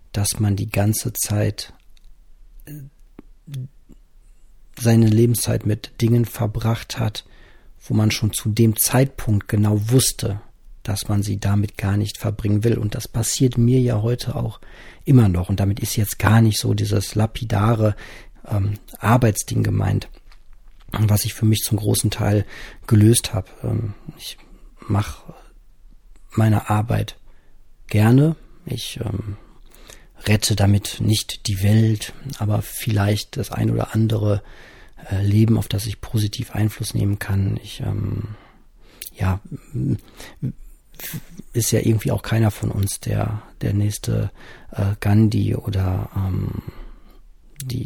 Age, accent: 40-59, German